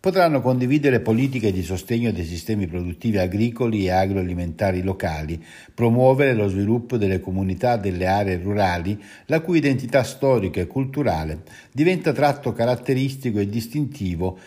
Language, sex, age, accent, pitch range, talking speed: Italian, male, 60-79, native, 100-140 Hz, 130 wpm